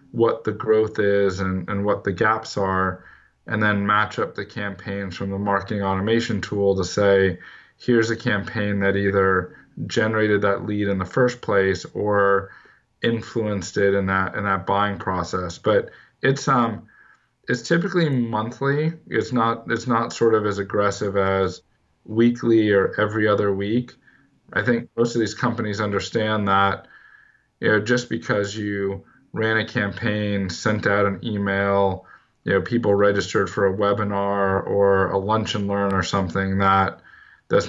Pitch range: 95-110 Hz